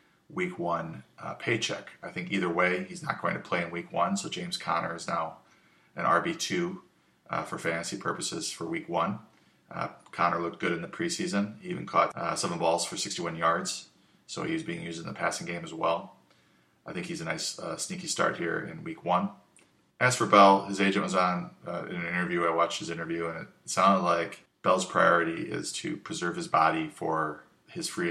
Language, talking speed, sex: English, 205 wpm, male